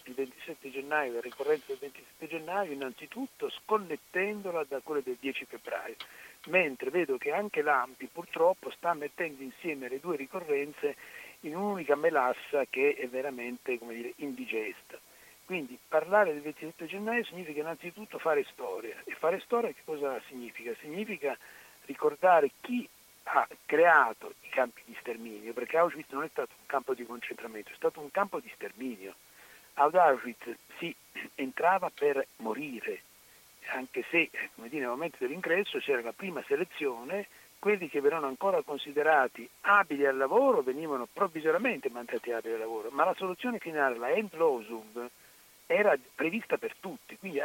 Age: 60-79